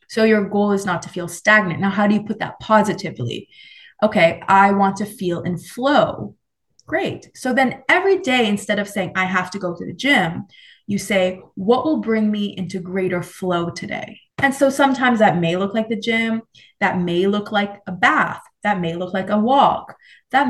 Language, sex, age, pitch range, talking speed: English, female, 20-39, 195-265 Hz, 200 wpm